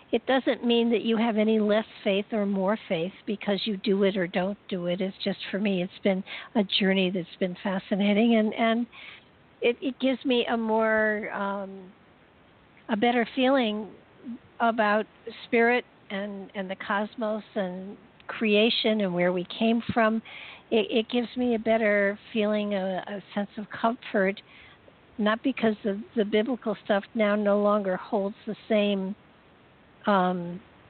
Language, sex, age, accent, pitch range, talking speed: English, female, 60-79, American, 195-230 Hz, 155 wpm